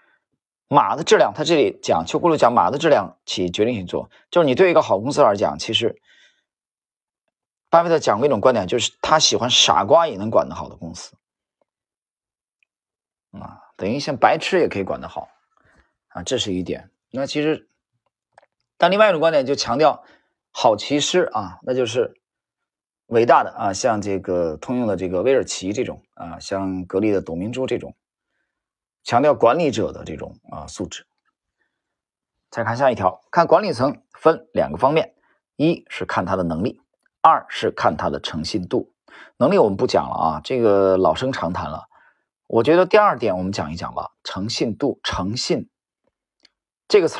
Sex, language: male, Chinese